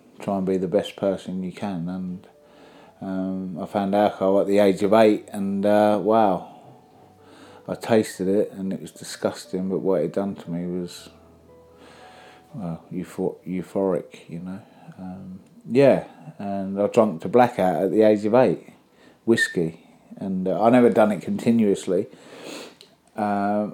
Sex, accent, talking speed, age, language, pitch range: male, British, 155 wpm, 30-49, English, 95-110 Hz